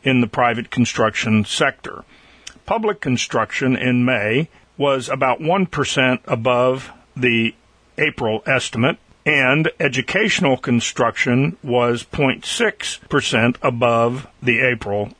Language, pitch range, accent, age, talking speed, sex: English, 110-130 Hz, American, 50-69, 95 wpm, male